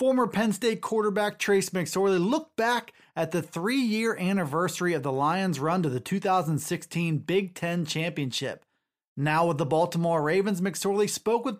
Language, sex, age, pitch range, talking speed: English, male, 30-49, 170-220 Hz, 160 wpm